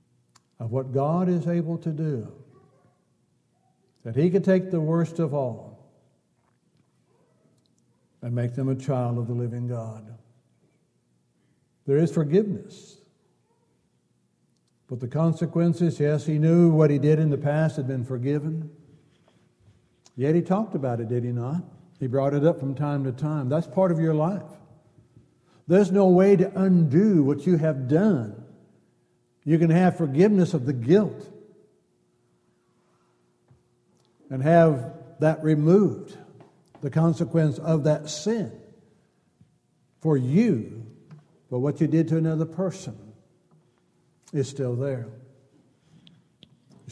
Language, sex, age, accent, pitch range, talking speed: English, male, 60-79, American, 125-165 Hz, 130 wpm